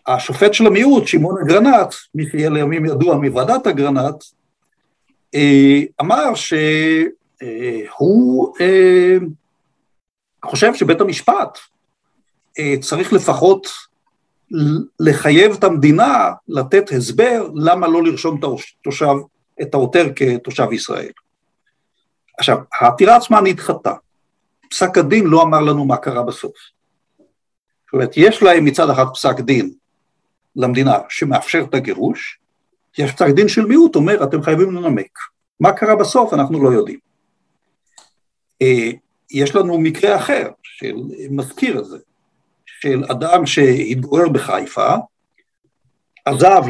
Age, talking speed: 50-69, 105 wpm